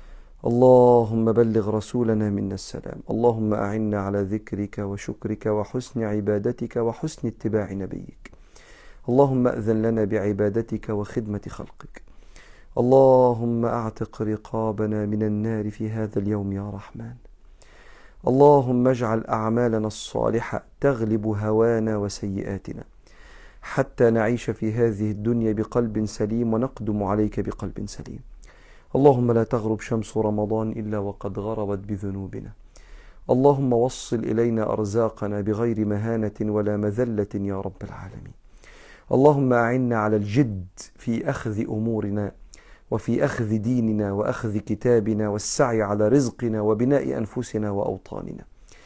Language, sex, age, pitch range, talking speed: Arabic, male, 40-59, 105-120 Hz, 105 wpm